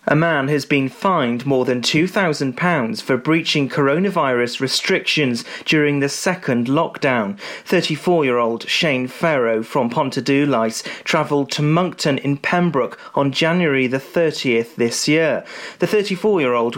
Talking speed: 120 wpm